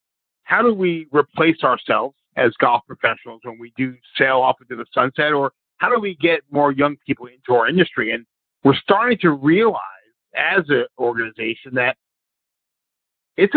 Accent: American